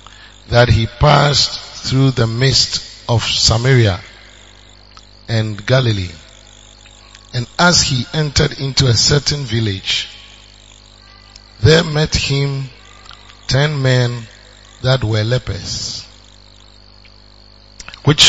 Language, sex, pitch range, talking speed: English, male, 105-125 Hz, 90 wpm